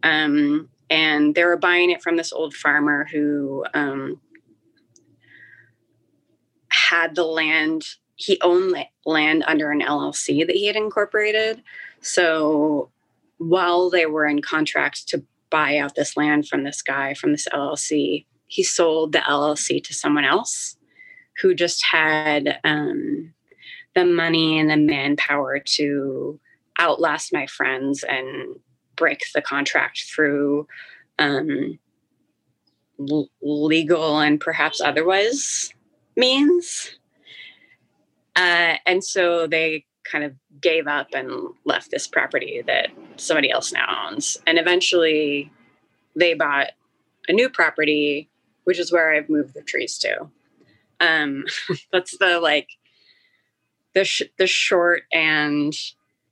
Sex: female